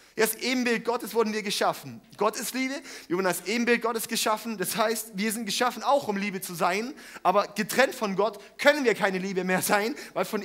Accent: German